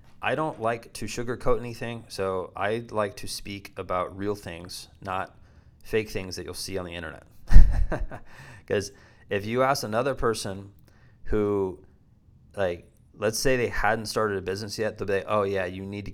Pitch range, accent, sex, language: 95-115 Hz, American, male, English